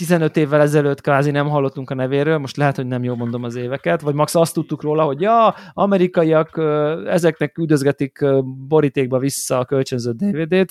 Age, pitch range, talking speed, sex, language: 20-39, 135-165 Hz, 175 wpm, male, Hungarian